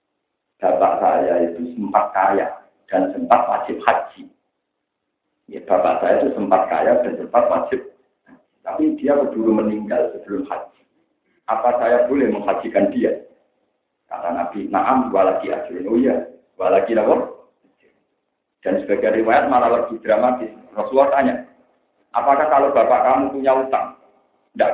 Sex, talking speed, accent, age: male, 125 wpm, native, 50-69